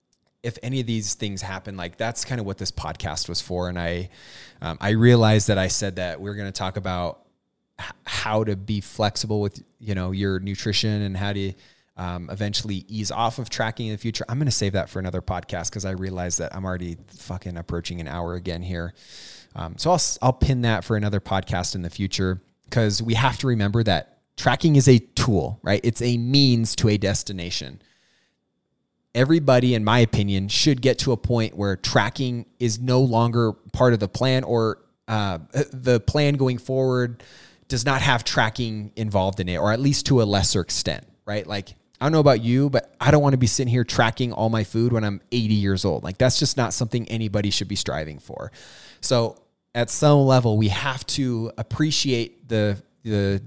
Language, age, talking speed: English, 20-39, 205 wpm